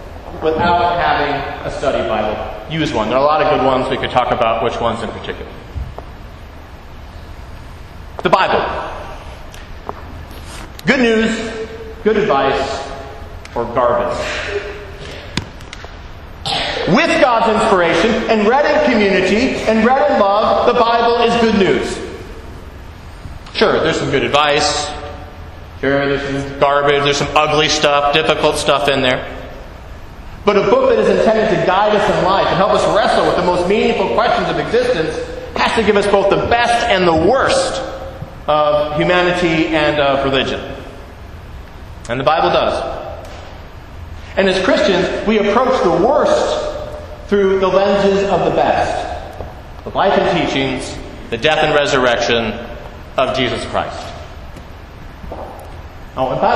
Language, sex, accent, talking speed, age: English, male, American, 140 wpm, 40-59